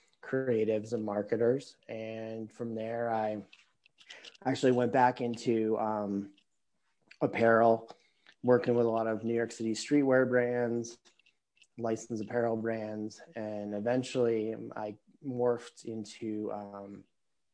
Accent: American